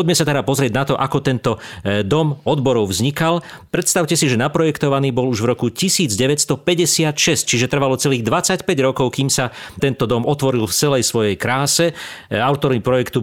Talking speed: 165 wpm